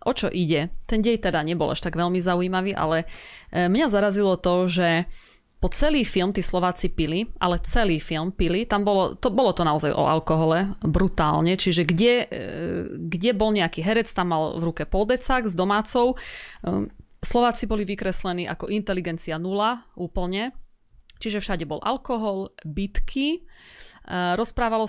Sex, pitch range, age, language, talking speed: female, 170-210 Hz, 30-49, Slovak, 145 wpm